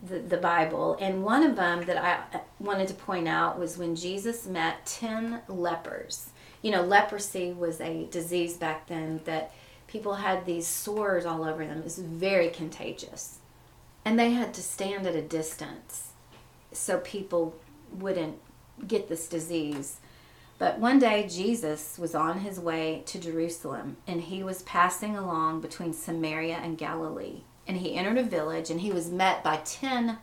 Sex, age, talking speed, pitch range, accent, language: female, 30-49, 165 wpm, 165-210 Hz, American, English